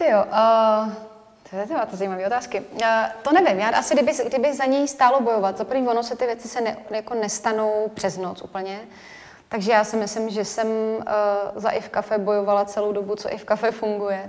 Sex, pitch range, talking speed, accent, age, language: female, 200-220 Hz, 200 wpm, native, 20-39, Czech